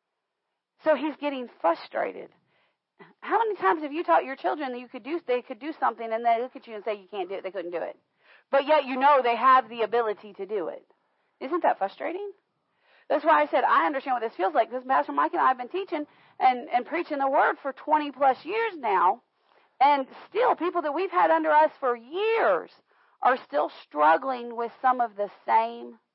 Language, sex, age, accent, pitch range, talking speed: English, female, 40-59, American, 235-315 Hz, 220 wpm